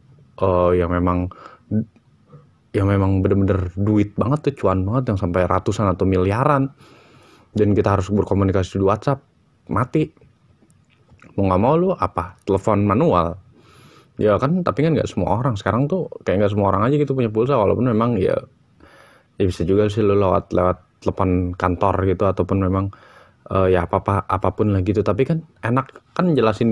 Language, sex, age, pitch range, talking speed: Indonesian, male, 20-39, 95-120 Hz, 165 wpm